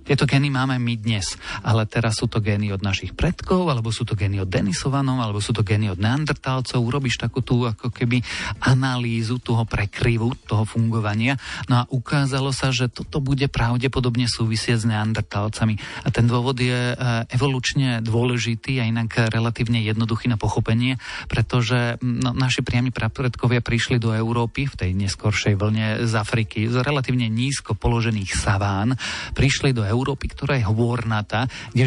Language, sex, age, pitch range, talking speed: Slovak, male, 40-59, 110-125 Hz, 160 wpm